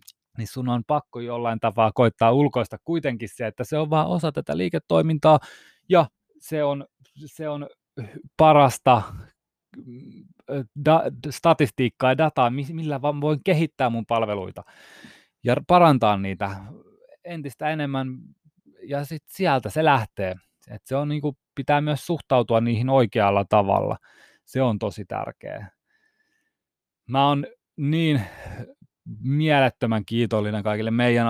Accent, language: native, Finnish